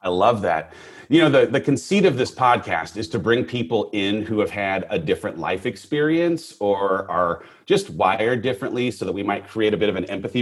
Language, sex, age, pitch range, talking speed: English, male, 30-49, 95-120 Hz, 220 wpm